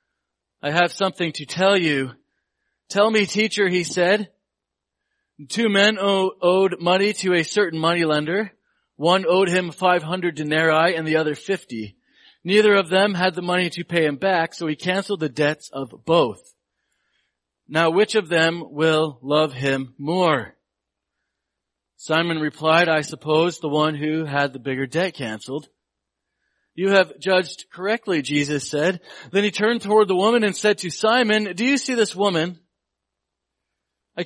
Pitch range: 160-200 Hz